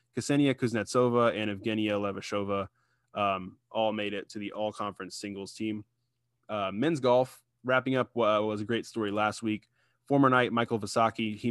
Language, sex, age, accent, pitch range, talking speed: English, male, 20-39, American, 105-120 Hz, 160 wpm